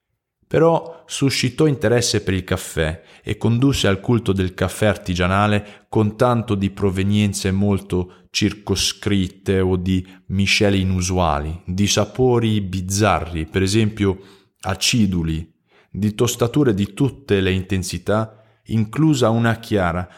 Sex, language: male, Italian